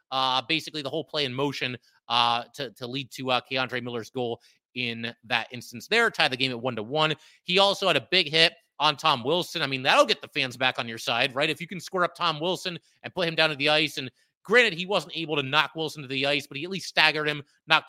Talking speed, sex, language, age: 265 wpm, male, English, 30-49